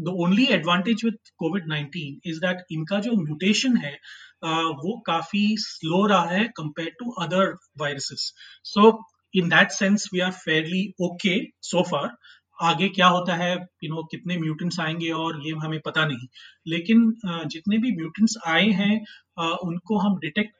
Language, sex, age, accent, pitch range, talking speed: Hindi, male, 30-49, native, 160-200 Hz, 155 wpm